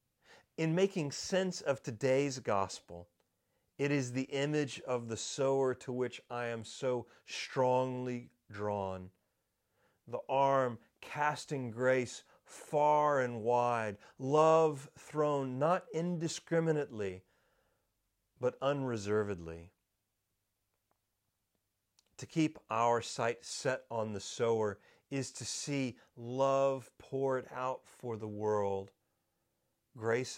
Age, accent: 40-59, American